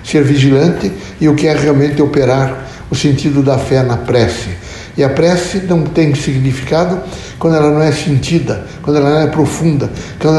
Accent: Brazilian